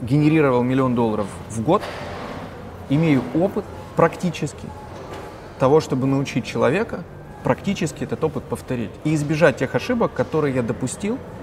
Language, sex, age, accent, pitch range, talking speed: Russian, male, 30-49, native, 120-150 Hz, 120 wpm